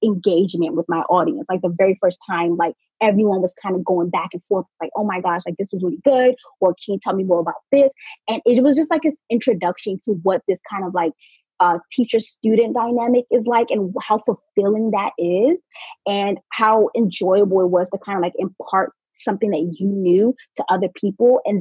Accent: American